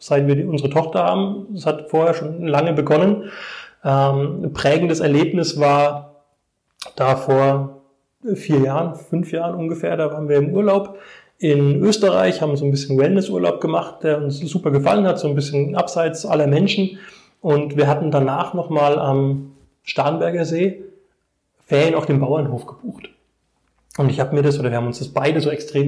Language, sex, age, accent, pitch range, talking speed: German, male, 20-39, German, 145-180 Hz, 165 wpm